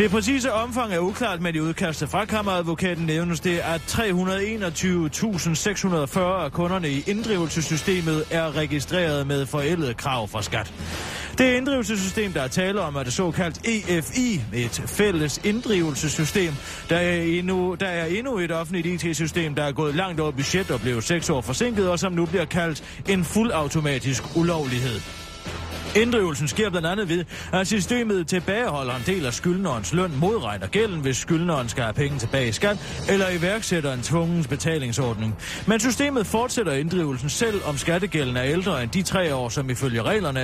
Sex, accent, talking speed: male, native, 160 wpm